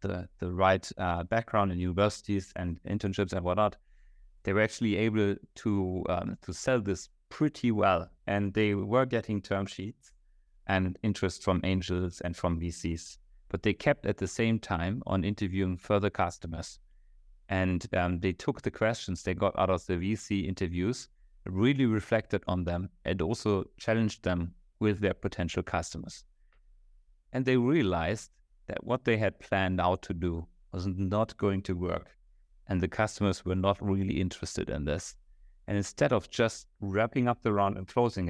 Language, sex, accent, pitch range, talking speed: English, male, German, 90-105 Hz, 165 wpm